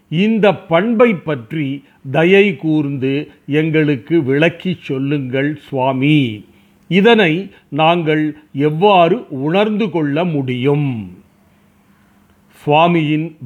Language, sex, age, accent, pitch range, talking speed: Tamil, male, 40-59, native, 145-190 Hz, 70 wpm